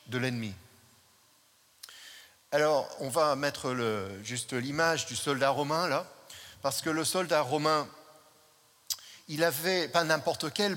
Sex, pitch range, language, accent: male, 145-200 Hz, French, French